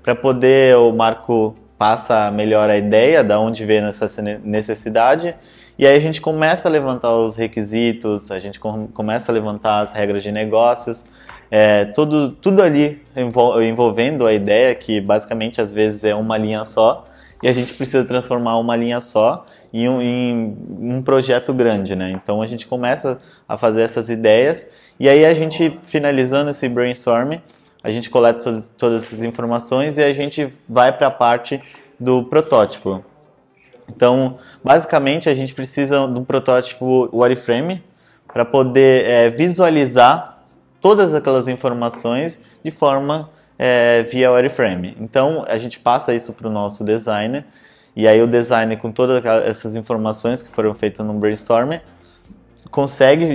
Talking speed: 150 wpm